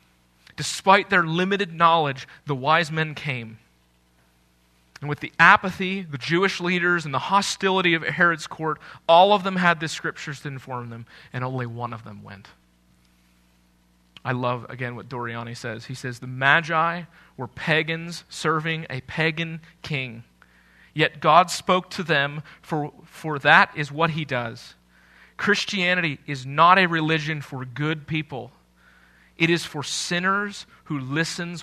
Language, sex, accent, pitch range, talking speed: English, male, American, 110-160 Hz, 150 wpm